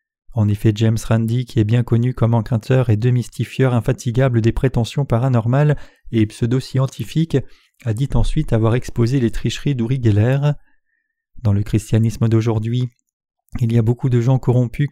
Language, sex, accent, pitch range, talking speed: French, male, French, 115-135 Hz, 155 wpm